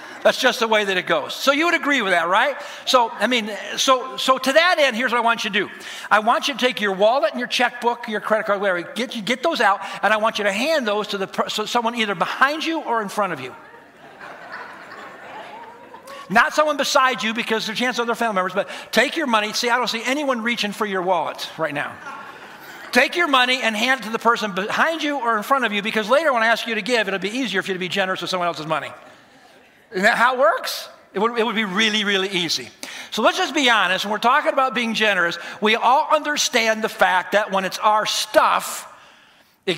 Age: 50-69